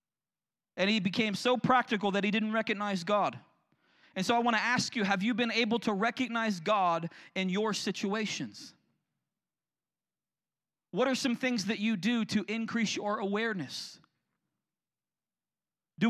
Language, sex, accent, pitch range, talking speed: English, male, American, 180-220 Hz, 145 wpm